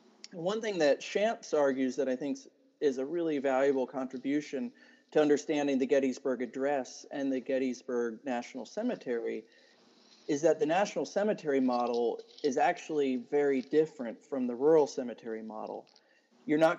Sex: male